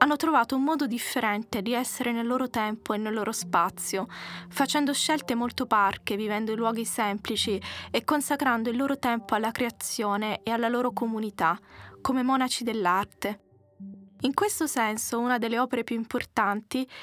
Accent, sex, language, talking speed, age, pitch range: native, female, Italian, 155 wpm, 20-39, 220-265 Hz